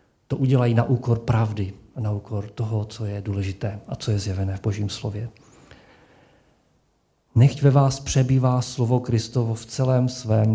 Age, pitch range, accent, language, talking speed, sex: 50-69, 115-150 Hz, native, Czech, 155 wpm, male